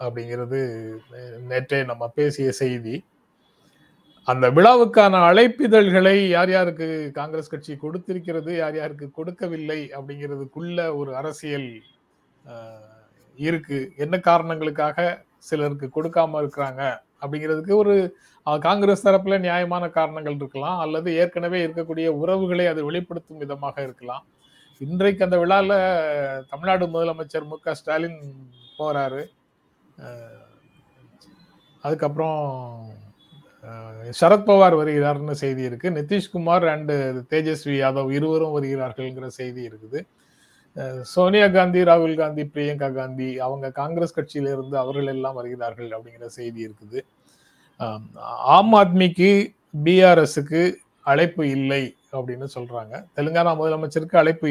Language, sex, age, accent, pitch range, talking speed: Tamil, male, 30-49, native, 135-170 Hz, 95 wpm